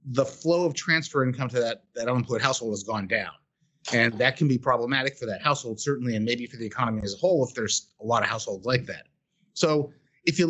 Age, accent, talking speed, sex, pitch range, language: 30-49, American, 235 wpm, male, 120-150 Hz, English